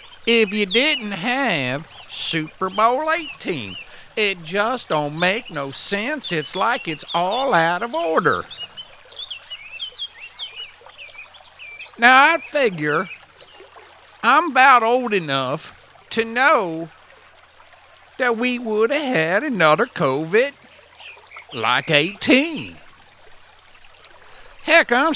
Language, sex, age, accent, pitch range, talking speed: English, male, 50-69, American, 175-255 Hz, 95 wpm